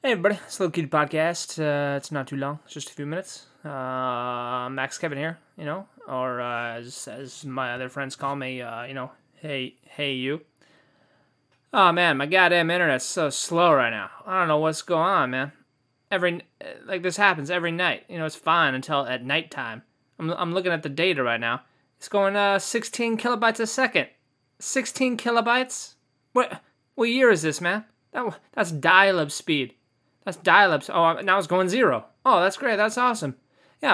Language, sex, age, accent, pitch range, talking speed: English, male, 20-39, American, 140-195 Hz, 195 wpm